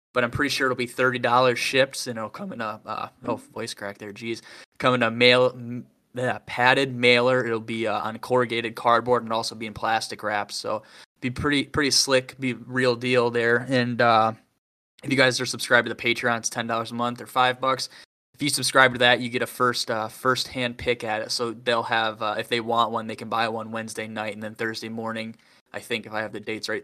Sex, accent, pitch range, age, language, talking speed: male, American, 115-125 Hz, 10-29, English, 240 wpm